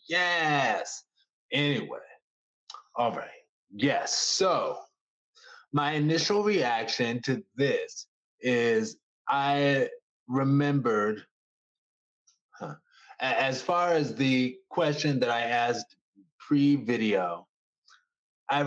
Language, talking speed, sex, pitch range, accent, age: English, 75 wpm, male, 125-175 Hz, American, 20-39